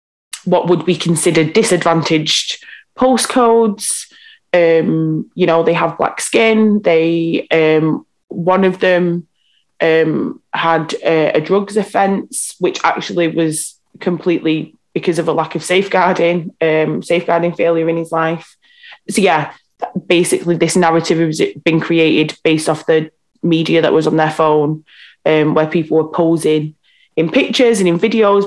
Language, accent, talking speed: English, British, 140 wpm